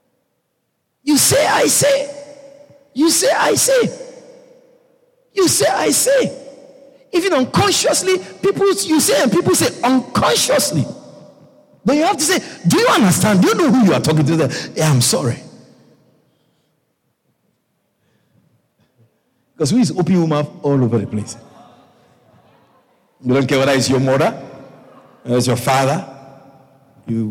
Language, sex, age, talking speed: English, male, 50-69, 135 wpm